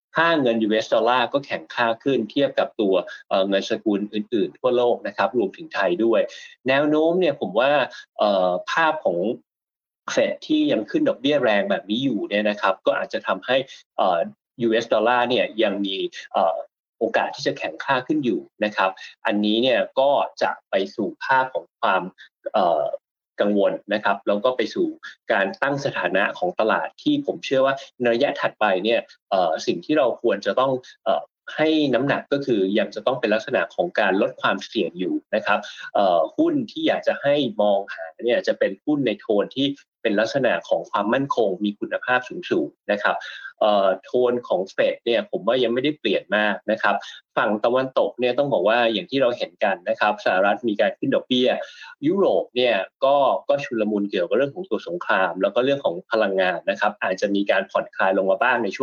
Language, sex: Thai, male